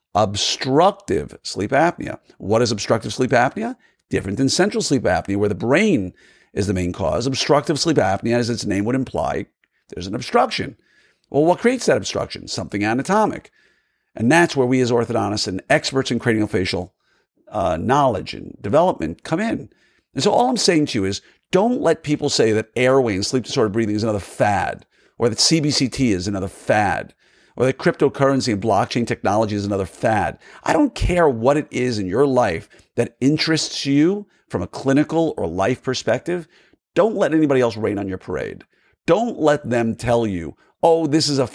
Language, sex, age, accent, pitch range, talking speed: English, male, 50-69, American, 105-150 Hz, 180 wpm